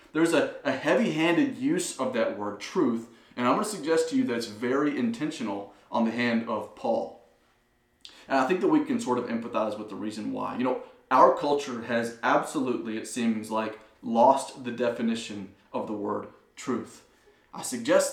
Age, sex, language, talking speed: 30-49, male, English, 180 wpm